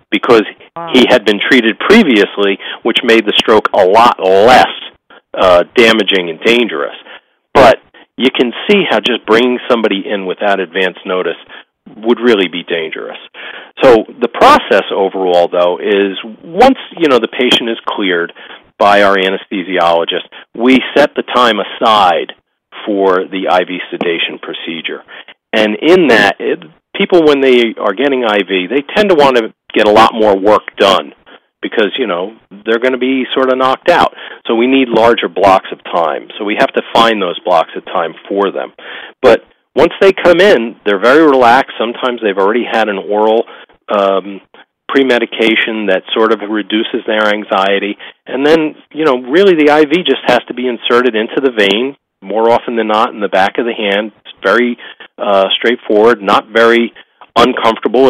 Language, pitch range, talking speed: English, 100-125 Hz, 165 wpm